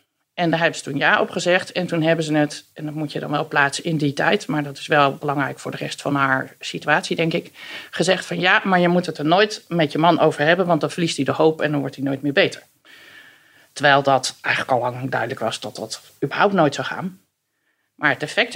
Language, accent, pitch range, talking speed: Dutch, Dutch, 145-190 Hz, 255 wpm